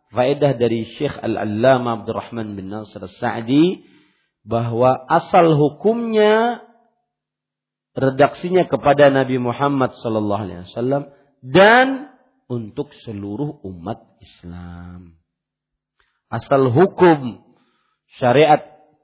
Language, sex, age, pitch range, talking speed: Malay, male, 40-59, 115-170 Hz, 90 wpm